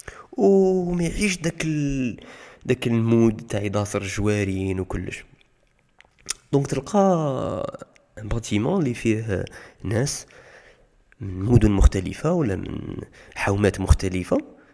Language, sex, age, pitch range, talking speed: Arabic, male, 20-39, 100-140 Hz, 95 wpm